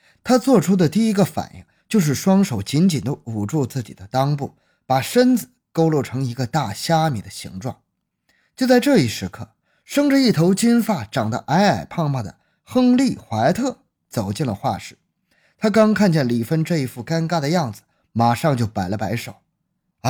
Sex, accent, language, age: male, native, Chinese, 20-39